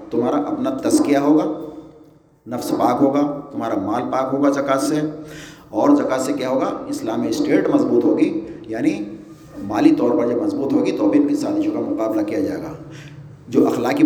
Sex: male